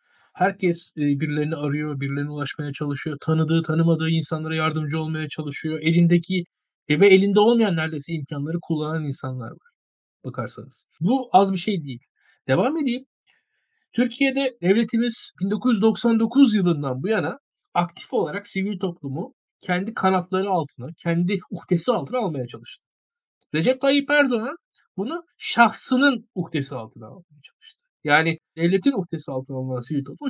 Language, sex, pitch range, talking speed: Turkish, male, 145-210 Hz, 125 wpm